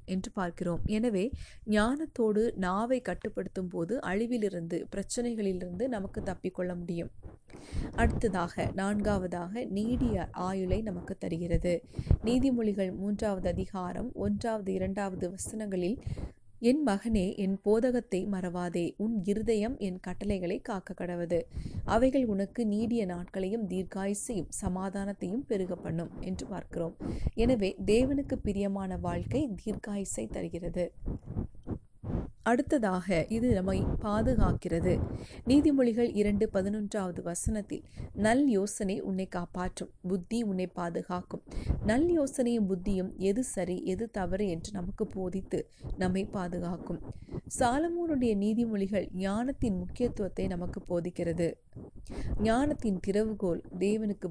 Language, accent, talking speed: Tamil, native, 95 wpm